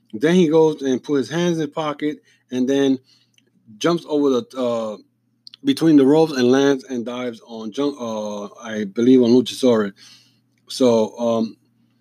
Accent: American